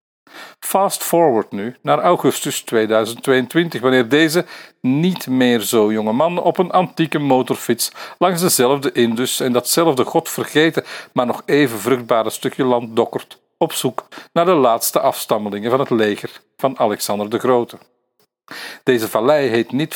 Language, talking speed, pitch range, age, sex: Dutch, 140 wpm, 120-160 Hz, 50-69, male